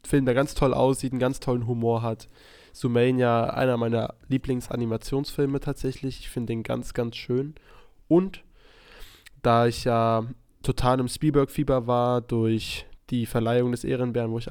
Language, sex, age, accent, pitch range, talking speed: German, male, 10-29, German, 115-135 Hz, 150 wpm